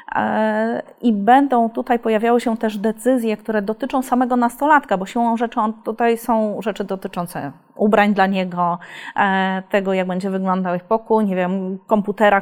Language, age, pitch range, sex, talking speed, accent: Polish, 30-49, 200-245 Hz, female, 150 wpm, native